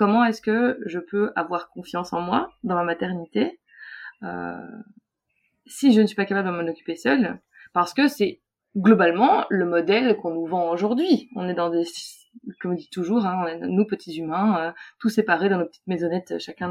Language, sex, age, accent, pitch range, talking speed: French, female, 20-39, French, 170-210 Hz, 190 wpm